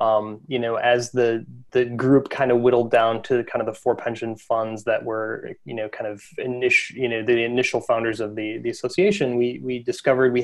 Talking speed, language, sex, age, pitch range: 220 wpm, English, male, 20-39, 110-125 Hz